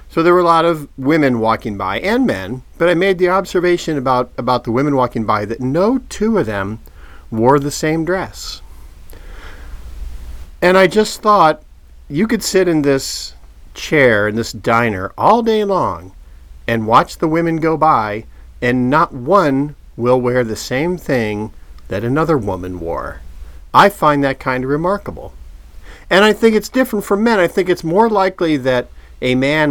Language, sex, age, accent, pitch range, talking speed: English, male, 40-59, American, 100-170 Hz, 175 wpm